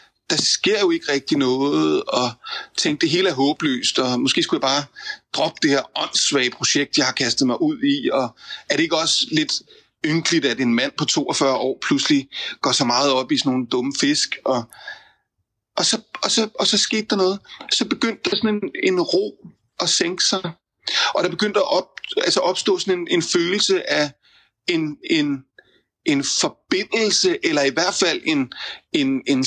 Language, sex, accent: Danish, male, native